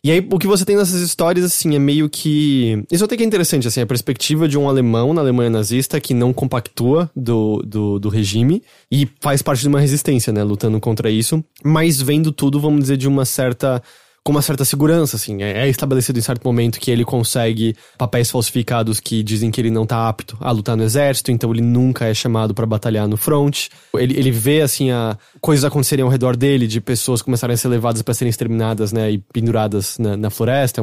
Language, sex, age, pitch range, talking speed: English, male, 20-39, 115-145 Hz, 215 wpm